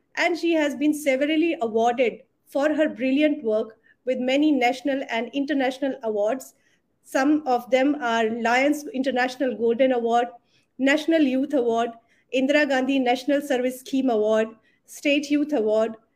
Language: Hindi